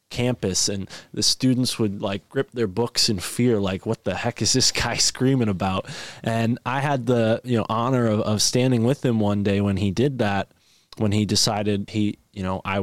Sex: male